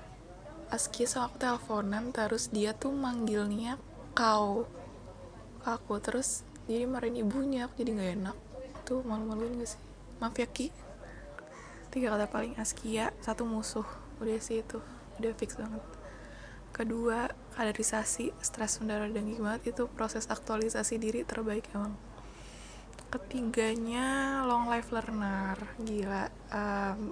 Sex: female